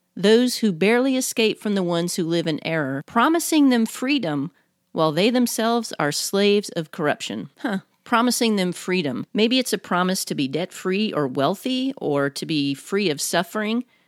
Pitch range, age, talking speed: 165-235 Hz, 40-59, 170 wpm